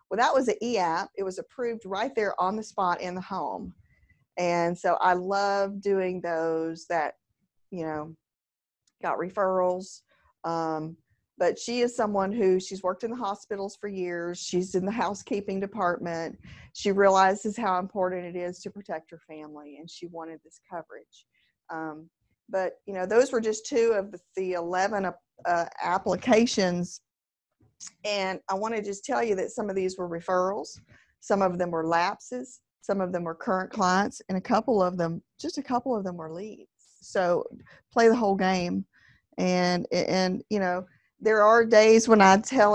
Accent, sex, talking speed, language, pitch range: American, female, 175 wpm, English, 175-210 Hz